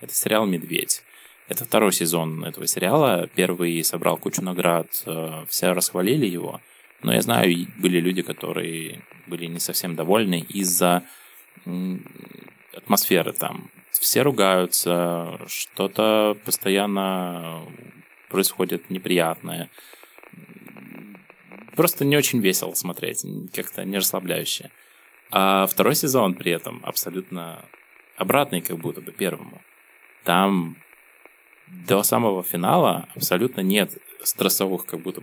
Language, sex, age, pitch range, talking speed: Russian, male, 20-39, 85-100 Hz, 105 wpm